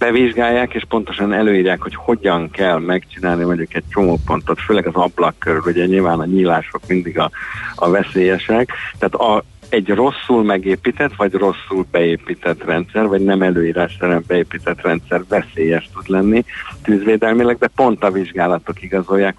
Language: Hungarian